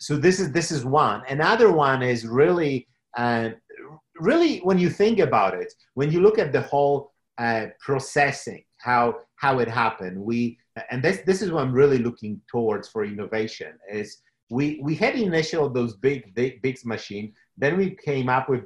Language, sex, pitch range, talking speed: English, male, 115-150 Hz, 180 wpm